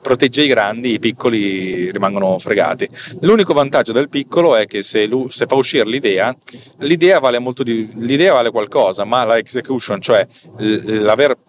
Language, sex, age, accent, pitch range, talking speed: Italian, male, 40-59, native, 110-140 Hz, 135 wpm